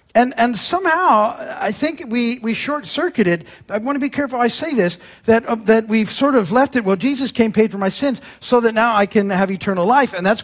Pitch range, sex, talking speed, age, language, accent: 175-270 Hz, male, 240 wpm, 50-69, English, American